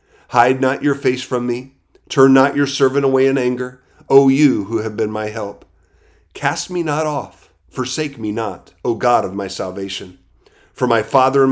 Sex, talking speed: male, 190 wpm